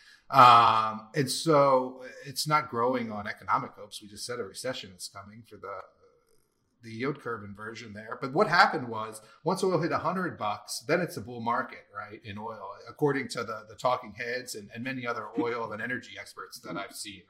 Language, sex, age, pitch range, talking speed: English, male, 30-49, 120-170 Hz, 200 wpm